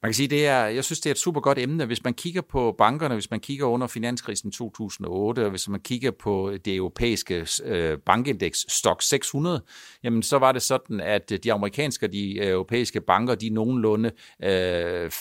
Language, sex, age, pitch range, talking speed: Danish, male, 60-79, 105-150 Hz, 195 wpm